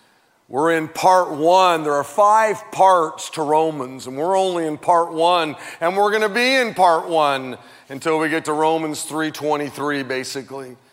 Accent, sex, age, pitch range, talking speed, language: American, male, 40-59, 155-230 Hz, 165 wpm, English